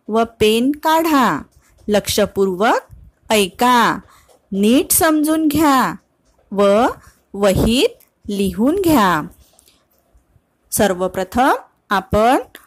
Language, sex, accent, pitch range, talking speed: Marathi, female, native, 200-290 Hz, 60 wpm